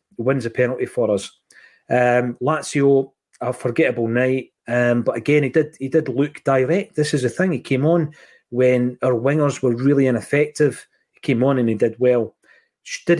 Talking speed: 180 wpm